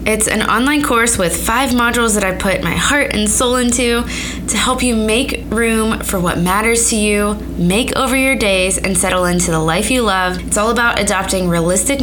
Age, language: 20-39, English